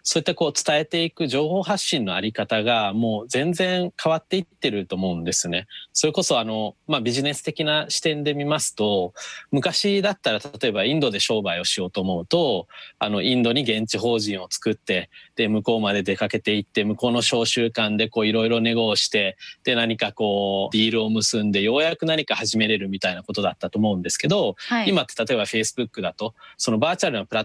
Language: Japanese